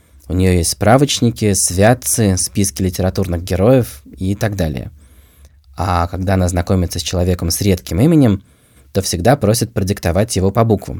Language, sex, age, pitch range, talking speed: Russian, male, 20-39, 90-115 Hz, 145 wpm